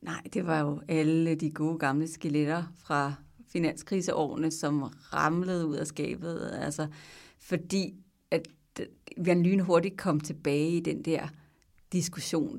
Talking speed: 140 wpm